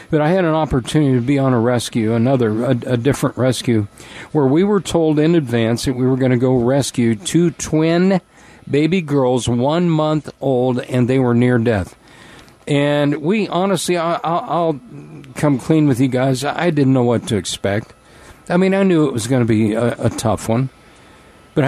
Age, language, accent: 50-69, English, American